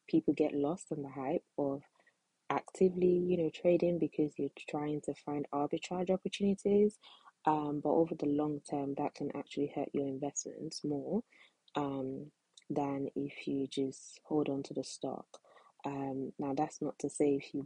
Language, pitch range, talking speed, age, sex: English, 135-150 Hz, 165 wpm, 20-39, female